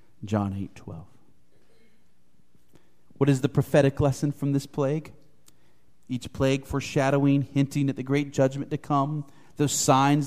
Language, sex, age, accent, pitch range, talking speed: English, male, 40-59, American, 115-145 Hz, 135 wpm